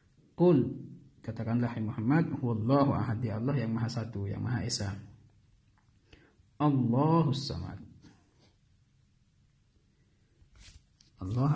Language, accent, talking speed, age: Indonesian, native, 65 wpm, 50-69